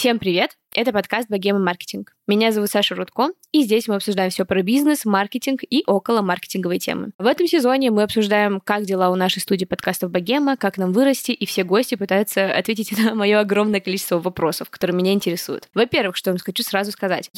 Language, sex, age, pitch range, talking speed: Russian, female, 20-39, 185-240 Hz, 195 wpm